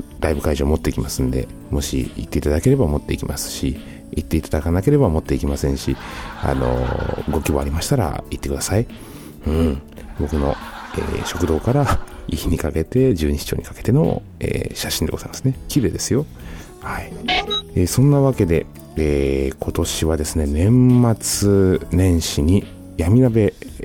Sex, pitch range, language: male, 75-90 Hz, Japanese